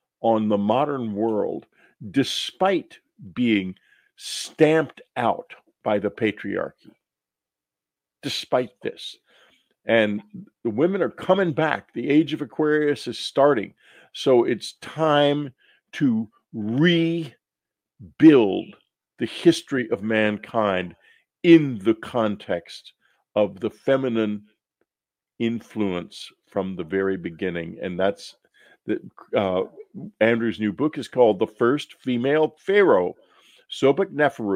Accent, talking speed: American, 100 wpm